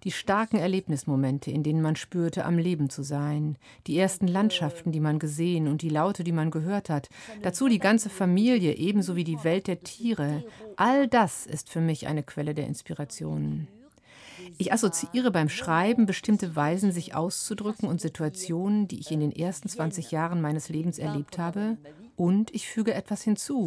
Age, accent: 50-69, German